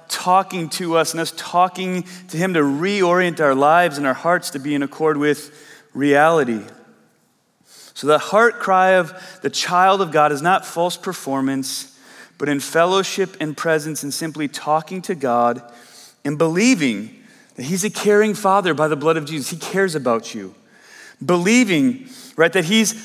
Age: 30-49